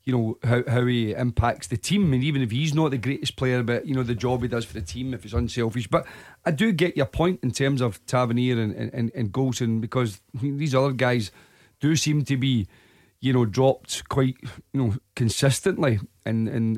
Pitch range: 120-140 Hz